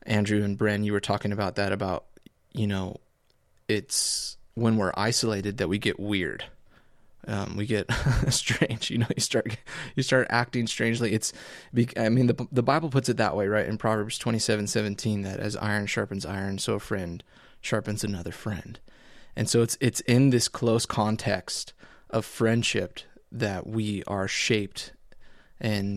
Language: English